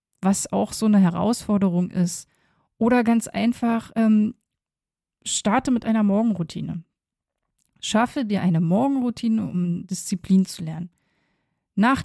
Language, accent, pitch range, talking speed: German, German, 180-225 Hz, 115 wpm